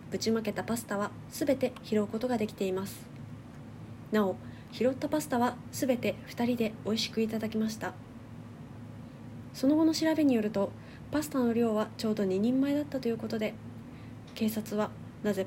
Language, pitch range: Japanese, 200-260 Hz